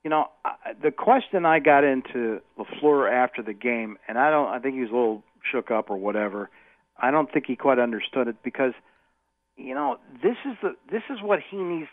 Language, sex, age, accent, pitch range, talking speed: English, male, 50-69, American, 125-190 Hz, 205 wpm